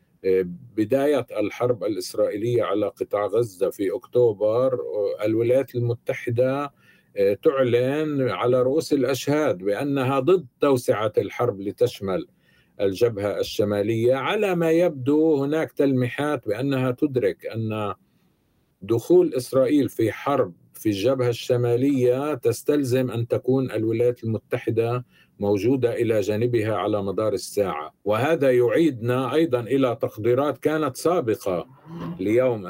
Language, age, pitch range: Arabic, 50-69, 115-145 Hz